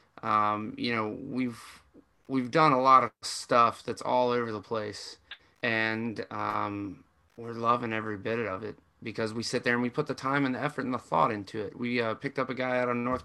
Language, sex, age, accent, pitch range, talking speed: English, male, 30-49, American, 115-135 Hz, 220 wpm